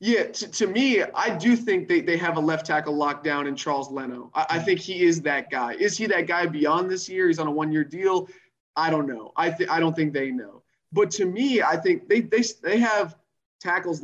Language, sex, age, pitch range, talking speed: English, male, 20-39, 145-180 Hz, 240 wpm